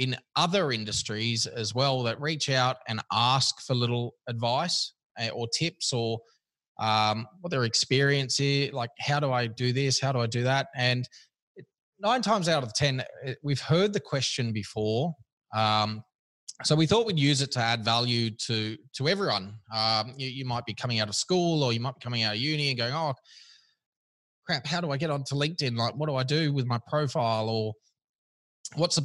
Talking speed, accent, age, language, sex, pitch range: 195 wpm, Australian, 20-39, English, male, 115-140 Hz